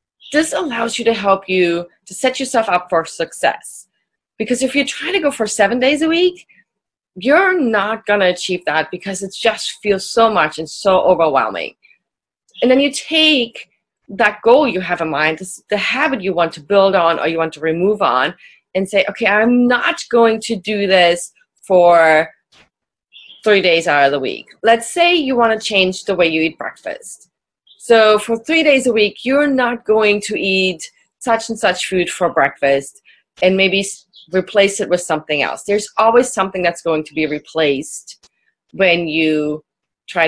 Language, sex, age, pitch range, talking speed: English, female, 30-49, 170-245 Hz, 185 wpm